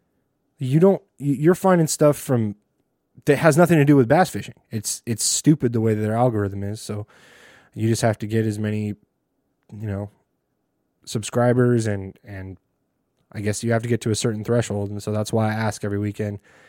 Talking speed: 195 wpm